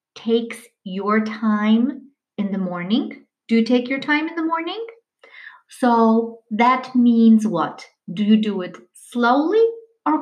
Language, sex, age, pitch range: English, female, 40-59, 185-255 Hz